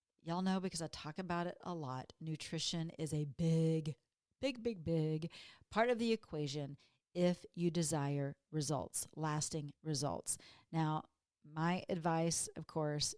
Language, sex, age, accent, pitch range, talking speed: English, female, 50-69, American, 155-185 Hz, 140 wpm